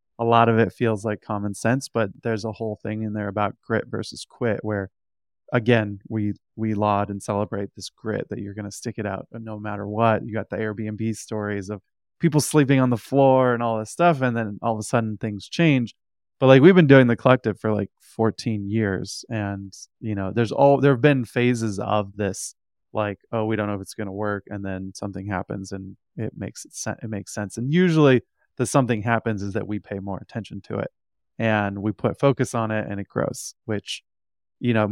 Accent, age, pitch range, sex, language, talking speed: American, 20-39, 100-120 Hz, male, English, 220 wpm